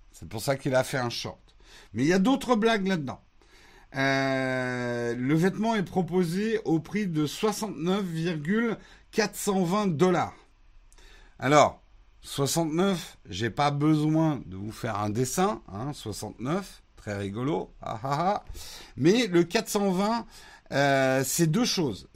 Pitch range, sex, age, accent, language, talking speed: 125-185 Hz, male, 50-69, French, French, 135 wpm